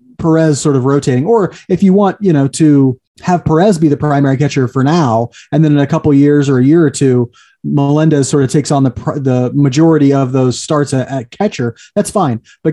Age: 30-49